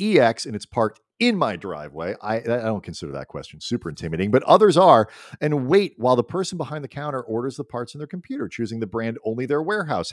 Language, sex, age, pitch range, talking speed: English, male, 40-59, 95-160 Hz, 225 wpm